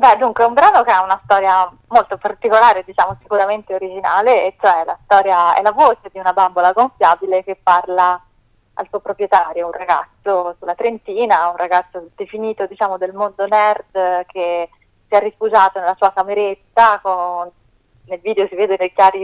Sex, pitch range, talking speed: female, 180-205 Hz, 170 wpm